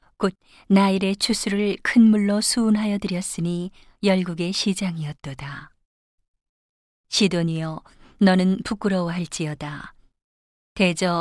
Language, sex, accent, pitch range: Korean, female, native, 170-205 Hz